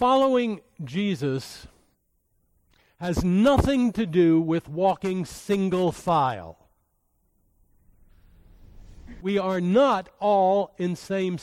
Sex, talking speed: male, 85 wpm